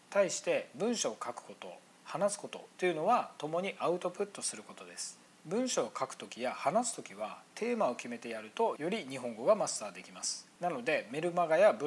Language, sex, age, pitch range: Japanese, male, 40-59, 125-175 Hz